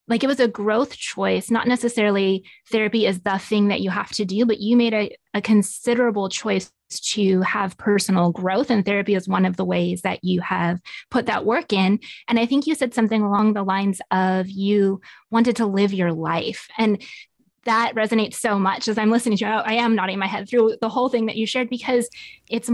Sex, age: female, 20-39